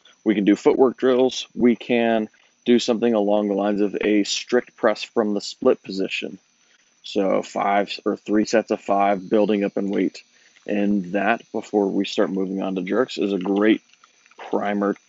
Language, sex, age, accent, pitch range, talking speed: English, male, 20-39, American, 100-115 Hz, 175 wpm